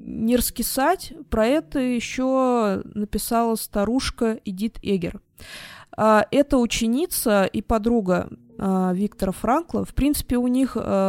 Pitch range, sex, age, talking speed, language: 195-235 Hz, female, 20-39, 115 wpm, Russian